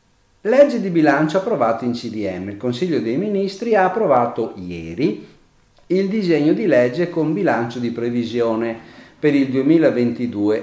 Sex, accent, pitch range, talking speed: male, native, 110-160 Hz, 135 wpm